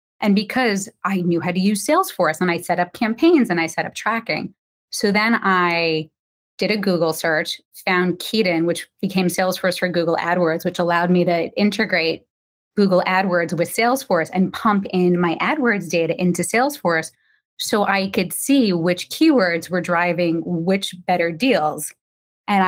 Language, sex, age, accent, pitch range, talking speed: English, female, 20-39, American, 175-215 Hz, 165 wpm